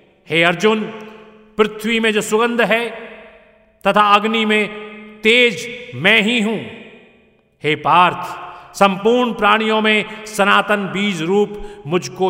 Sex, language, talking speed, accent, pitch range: male, Hindi, 110 wpm, native, 175-215 Hz